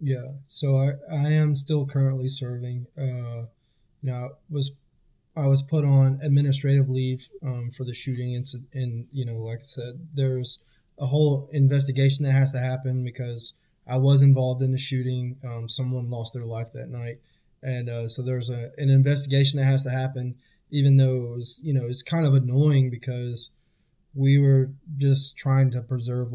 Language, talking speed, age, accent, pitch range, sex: English, 180 wpm, 20-39, American, 125-140 Hz, male